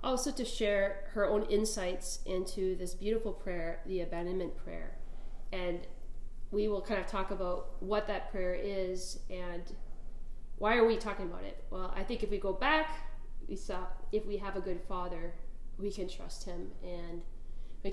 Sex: female